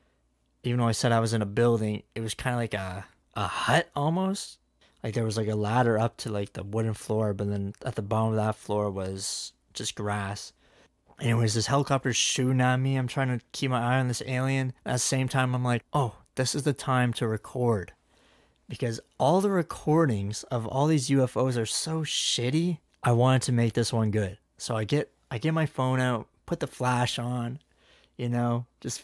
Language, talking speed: English, 210 wpm